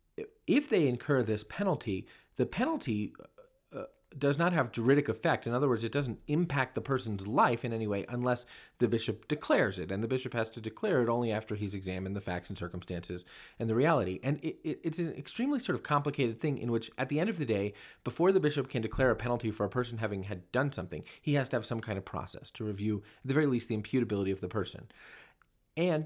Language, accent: English, American